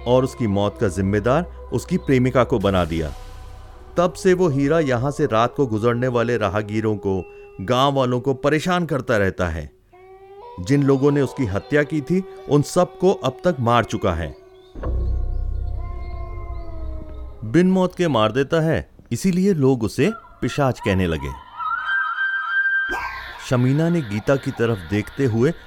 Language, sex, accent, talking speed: Hindi, male, native, 145 wpm